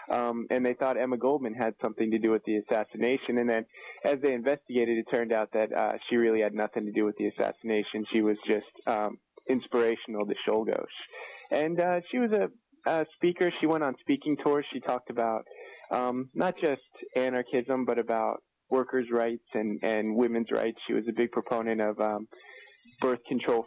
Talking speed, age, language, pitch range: 190 wpm, 20-39, English, 110-130 Hz